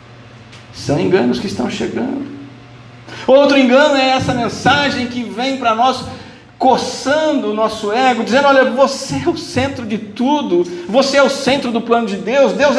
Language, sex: Portuguese, male